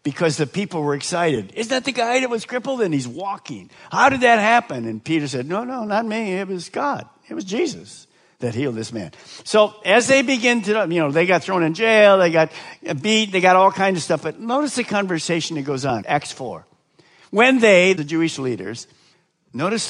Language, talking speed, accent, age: English, 215 wpm, American, 50-69